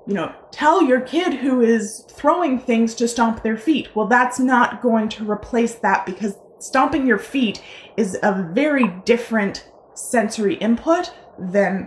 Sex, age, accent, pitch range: female, 20-39, American, 205-245 Hz